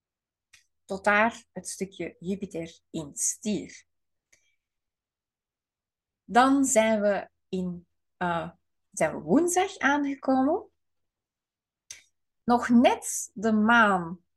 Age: 30-49